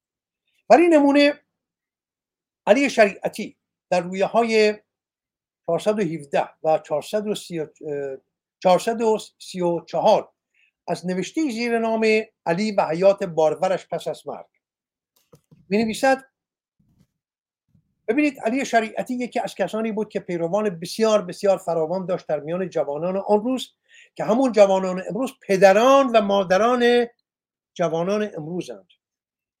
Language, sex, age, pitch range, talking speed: Persian, male, 50-69, 170-225 Hz, 100 wpm